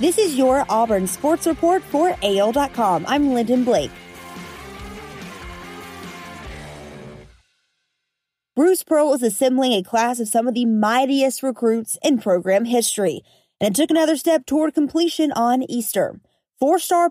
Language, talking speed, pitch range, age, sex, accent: English, 125 wpm, 200-260 Hz, 30-49, female, American